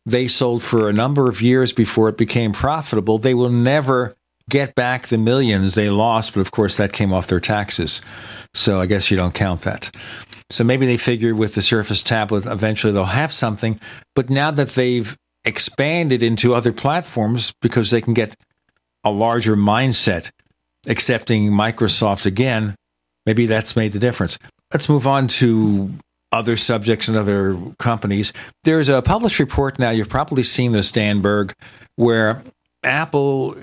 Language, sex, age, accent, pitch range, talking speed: English, male, 50-69, American, 105-125 Hz, 160 wpm